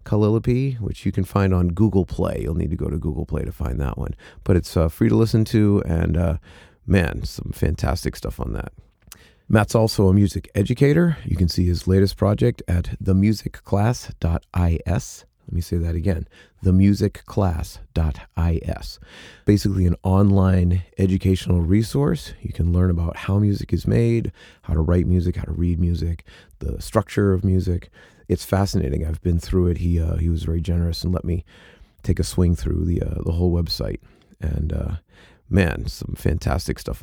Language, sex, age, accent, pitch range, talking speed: English, male, 30-49, American, 85-105 Hz, 175 wpm